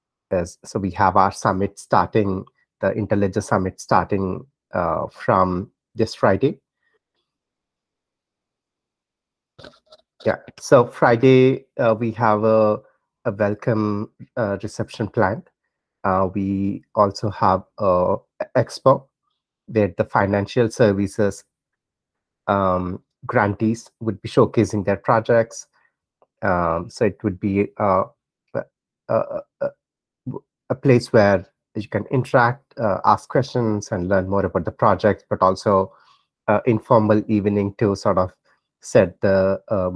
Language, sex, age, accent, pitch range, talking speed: English, male, 30-49, Indian, 95-115 Hz, 115 wpm